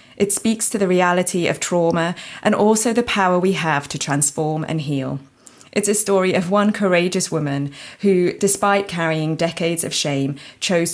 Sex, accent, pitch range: female, British, 145-185 Hz